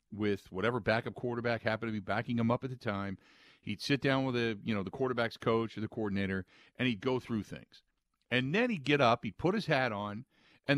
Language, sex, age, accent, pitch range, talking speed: English, male, 50-69, American, 110-150 Hz, 235 wpm